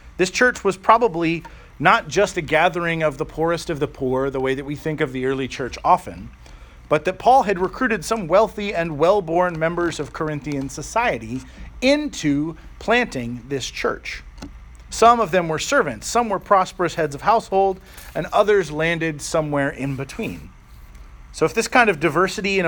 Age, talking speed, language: 40-59, 170 wpm, English